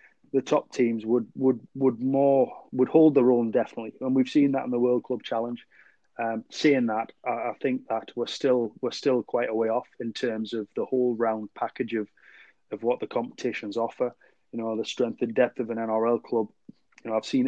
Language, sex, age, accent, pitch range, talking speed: English, male, 30-49, British, 110-125 Hz, 215 wpm